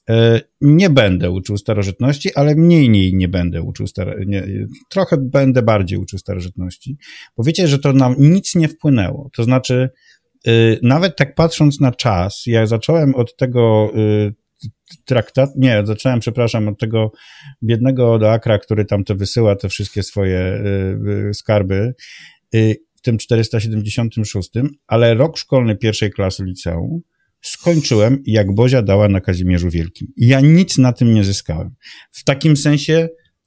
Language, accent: Polish, native